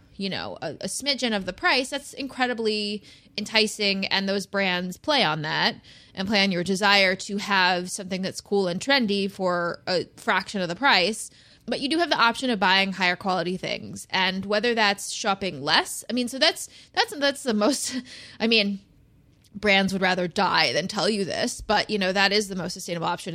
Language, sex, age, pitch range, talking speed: English, female, 20-39, 180-210 Hz, 200 wpm